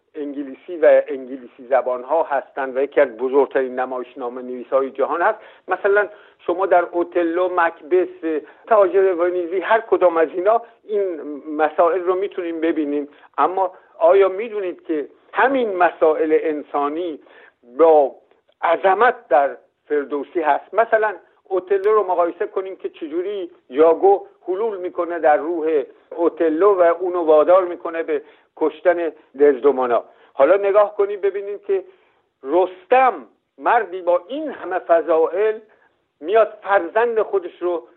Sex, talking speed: male, 125 wpm